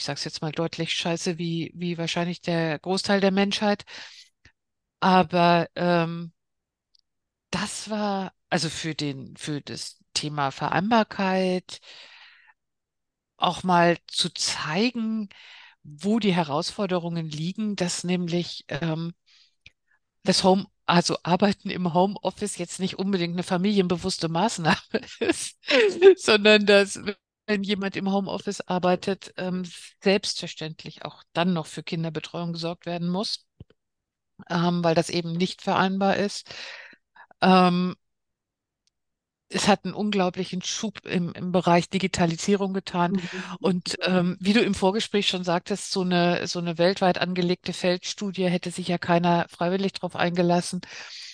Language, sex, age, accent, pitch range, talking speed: German, female, 50-69, German, 170-195 Hz, 120 wpm